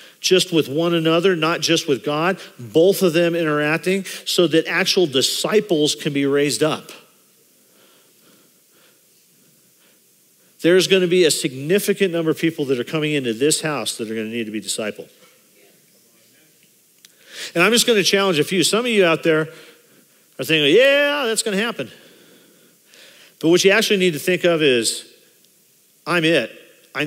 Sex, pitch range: male, 135-170 Hz